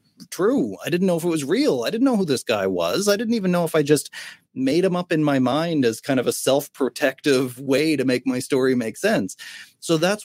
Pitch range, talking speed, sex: 115-145 Hz, 245 wpm, male